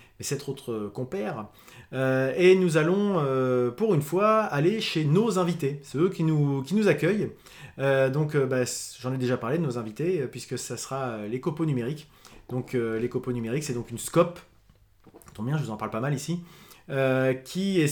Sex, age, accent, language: male, 30-49, French, French